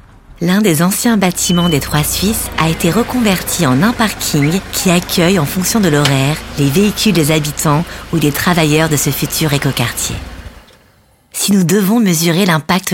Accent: French